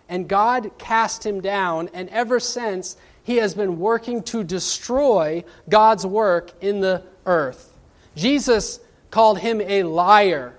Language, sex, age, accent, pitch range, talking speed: English, male, 30-49, American, 185-245 Hz, 135 wpm